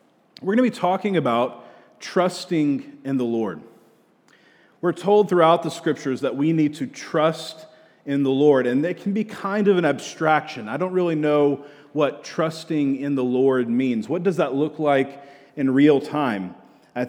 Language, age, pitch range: English, 40-59, 135-160 Hz